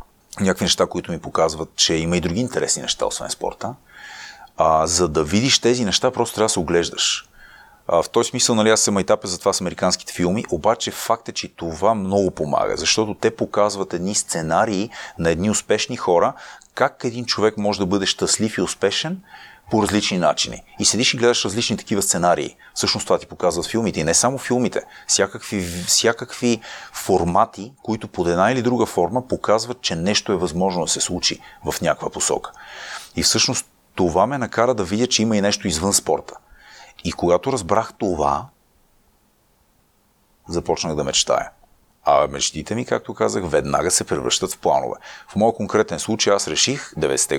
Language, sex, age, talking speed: Bulgarian, male, 30-49, 175 wpm